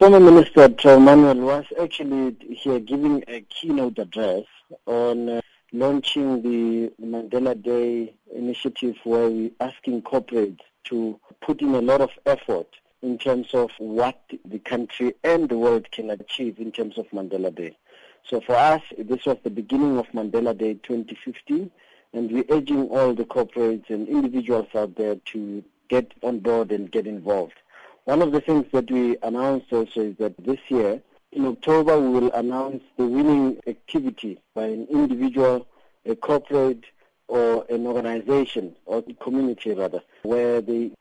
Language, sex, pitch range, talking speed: English, male, 115-135 Hz, 155 wpm